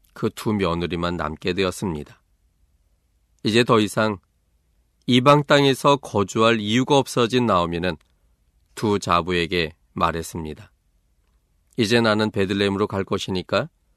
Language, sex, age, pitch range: Korean, male, 40-59, 80-120 Hz